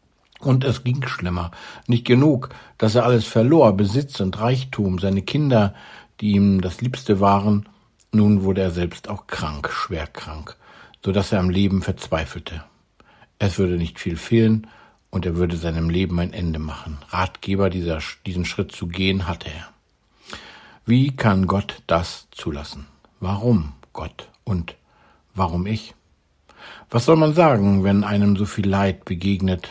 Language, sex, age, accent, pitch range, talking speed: German, male, 60-79, German, 90-115 Hz, 150 wpm